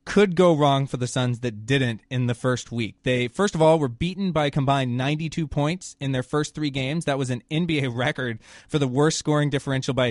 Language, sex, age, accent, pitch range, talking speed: English, male, 20-39, American, 135-165 Hz, 230 wpm